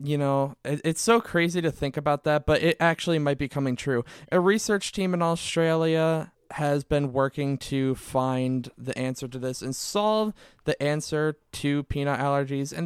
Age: 20-39